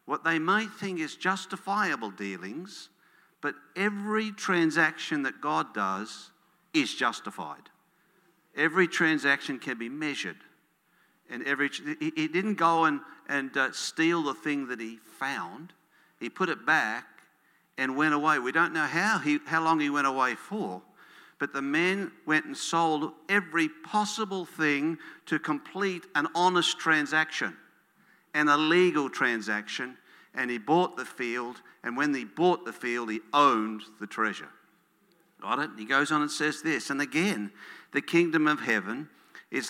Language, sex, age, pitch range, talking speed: English, male, 60-79, 140-180 Hz, 155 wpm